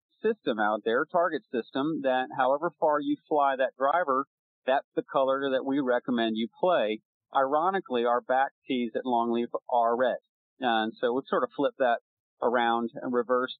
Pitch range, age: 120-160 Hz, 40-59